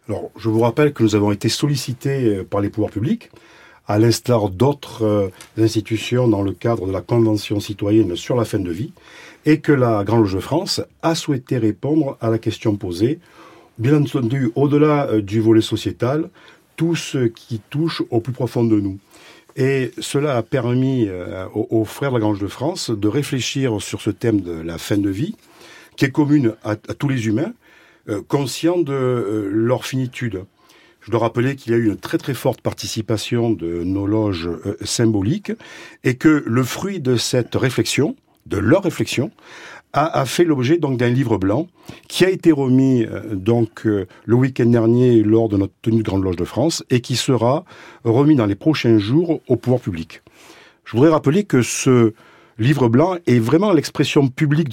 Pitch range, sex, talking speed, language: 110-140 Hz, male, 190 wpm, French